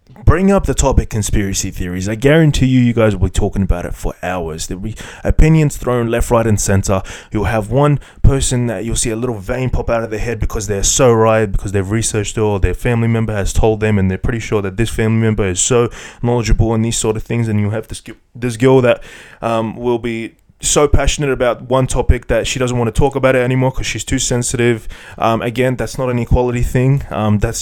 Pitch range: 105-125 Hz